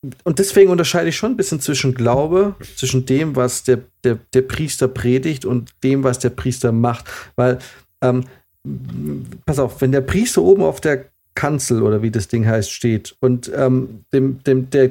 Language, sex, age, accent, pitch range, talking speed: German, male, 40-59, German, 120-140 Hz, 180 wpm